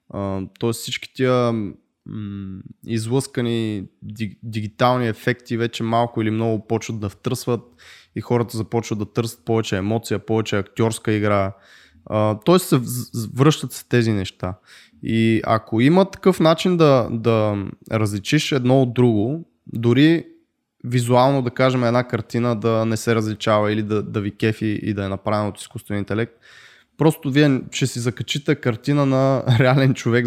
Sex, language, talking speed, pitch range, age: male, Bulgarian, 150 wpm, 105-130 Hz, 20-39